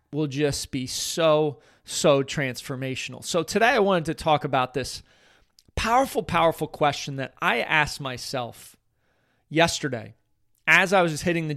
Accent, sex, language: American, male, English